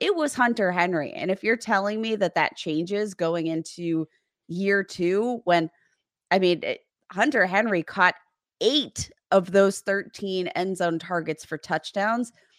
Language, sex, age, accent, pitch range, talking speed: English, female, 20-39, American, 170-205 Hz, 150 wpm